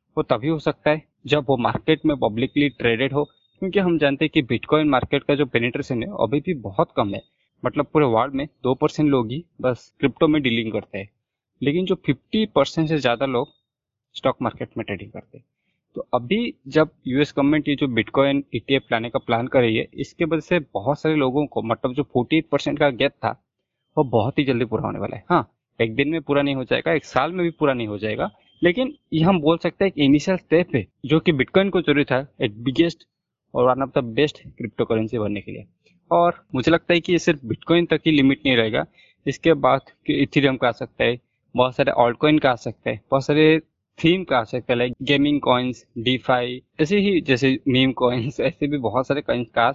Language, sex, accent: Hindi, male, native